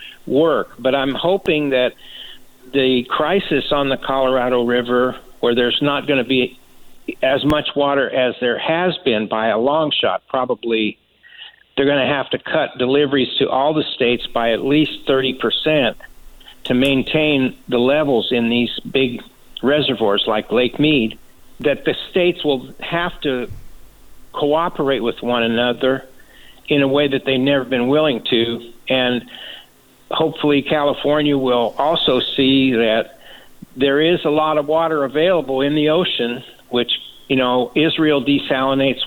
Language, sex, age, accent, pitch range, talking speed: English, male, 60-79, American, 125-150 Hz, 150 wpm